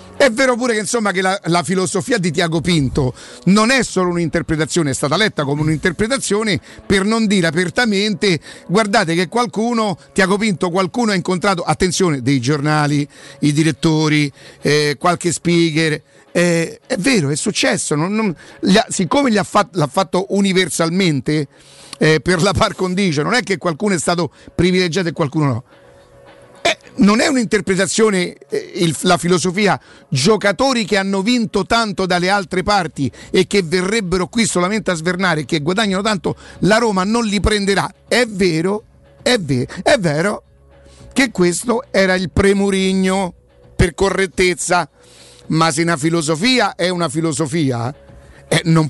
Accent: native